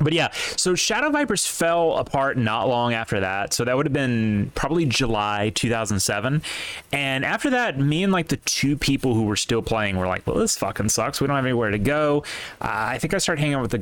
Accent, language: American, English